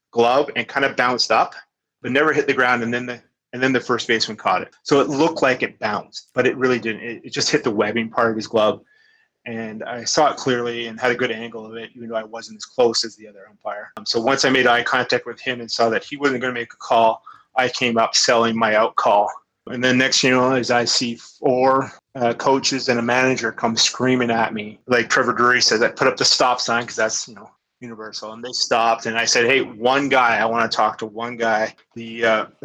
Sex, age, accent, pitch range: male, 30-49, American, 115-125 Hz